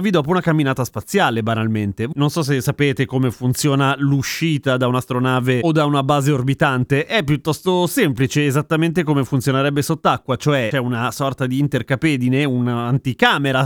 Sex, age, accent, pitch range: male, 30-49, native, 120-160 Hz